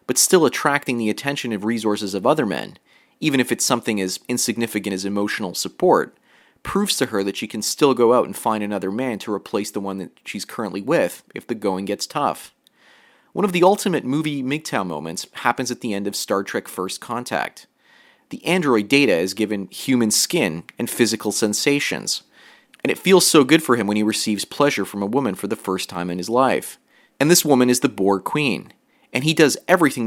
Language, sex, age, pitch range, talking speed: English, male, 30-49, 100-140 Hz, 205 wpm